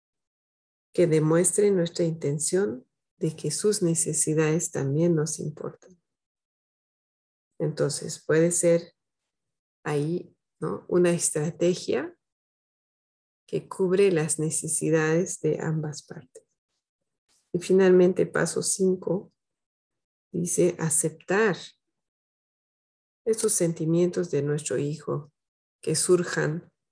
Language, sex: Spanish, female